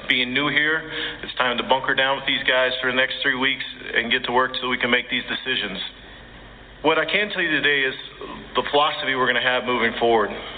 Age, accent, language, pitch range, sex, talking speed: 40-59, American, English, 125-140 Hz, male, 235 wpm